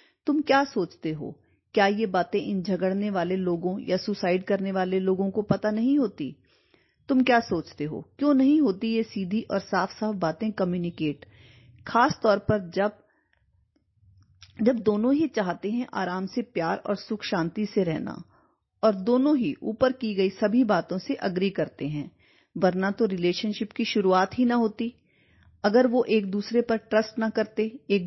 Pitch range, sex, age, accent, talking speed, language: 185-235 Hz, female, 40-59, native, 170 wpm, Hindi